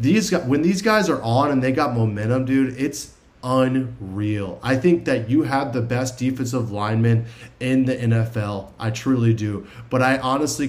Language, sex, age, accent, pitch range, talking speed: English, male, 20-39, American, 115-130 Hz, 175 wpm